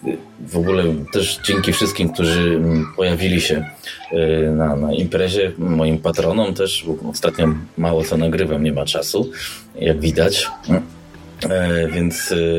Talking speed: 120 wpm